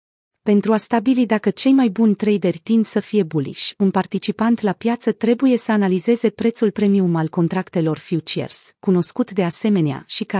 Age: 30-49